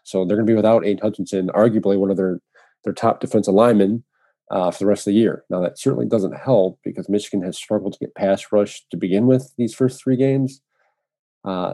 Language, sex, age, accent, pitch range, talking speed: English, male, 40-59, American, 100-115 Hz, 225 wpm